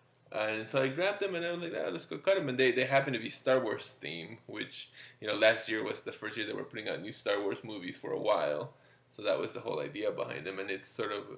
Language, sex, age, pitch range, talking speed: English, male, 20-39, 110-170 Hz, 290 wpm